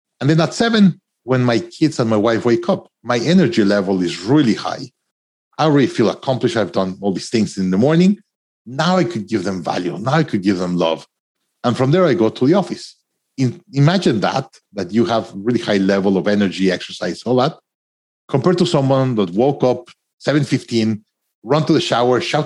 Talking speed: 205 wpm